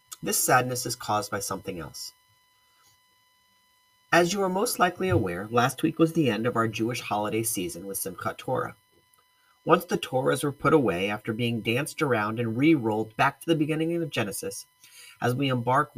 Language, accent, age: English, American, 40-59